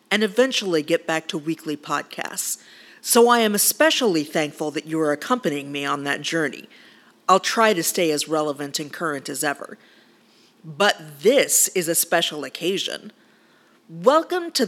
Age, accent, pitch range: 40-59, American, 165-265 Hz